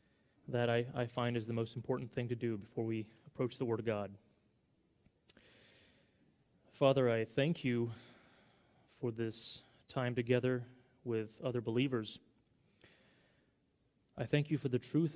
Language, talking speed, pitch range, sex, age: English, 140 wpm, 115-130 Hz, male, 30-49